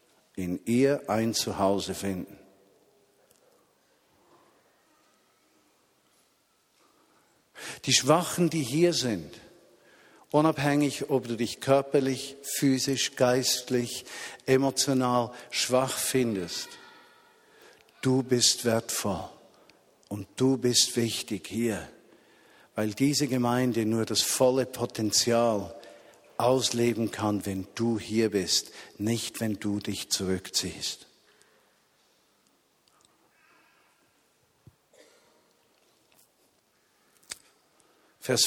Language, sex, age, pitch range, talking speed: German, male, 50-69, 115-140 Hz, 75 wpm